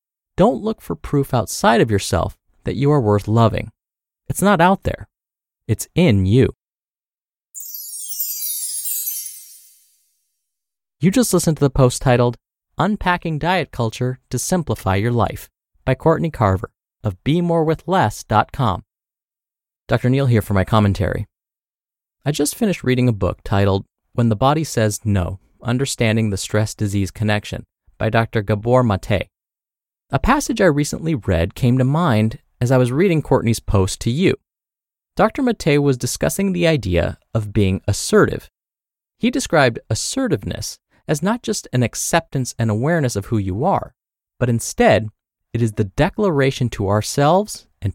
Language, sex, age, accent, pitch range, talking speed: English, male, 30-49, American, 105-150 Hz, 140 wpm